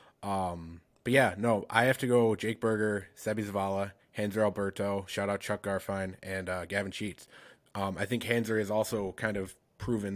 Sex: male